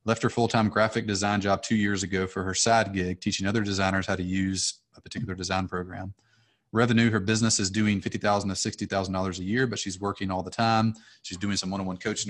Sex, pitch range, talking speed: male, 95-115 Hz, 215 wpm